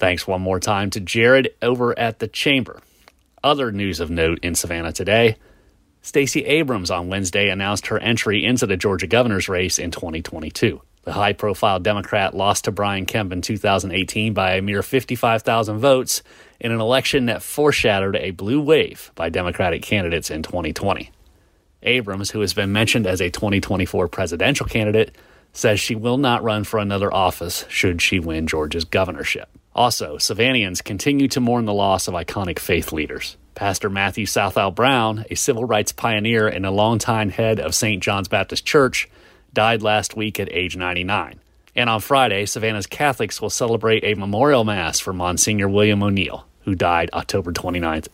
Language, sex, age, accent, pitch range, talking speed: English, male, 30-49, American, 95-115 Hz, 165 wpm